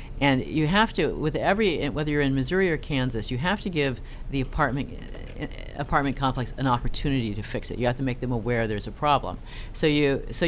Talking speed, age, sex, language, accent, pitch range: 210 wpm, 40-59, female, English, American, 120-155 Hz